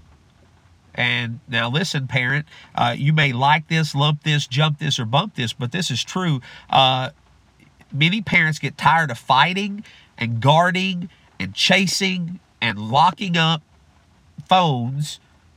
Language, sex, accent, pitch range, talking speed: English, male, American, 115-150 Hz, 135 wpm